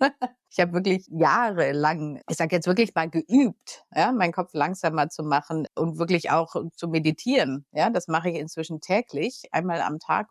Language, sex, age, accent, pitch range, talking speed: German, female, 50-69, German, 165-220 Hz, 175 wpm